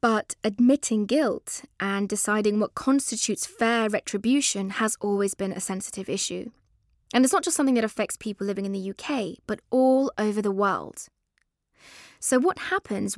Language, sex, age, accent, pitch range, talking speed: English, female, 20-39, British, 205-265 Hz, 160 wpm